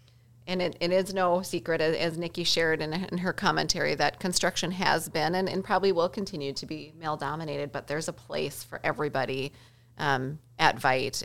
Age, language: 30-49, English